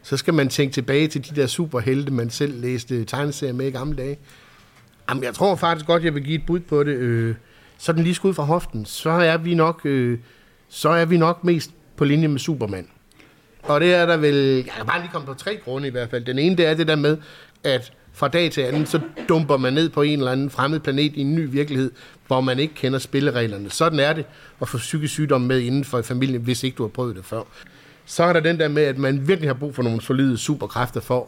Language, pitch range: Danish, 125-150 Hz